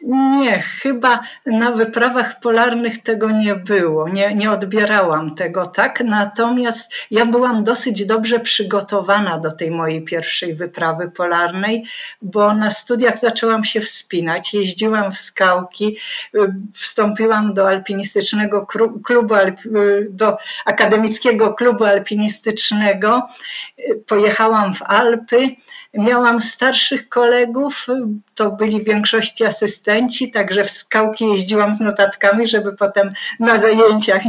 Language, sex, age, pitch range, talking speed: Polish, female, 50-69, 205-250 Hz, 105 wpm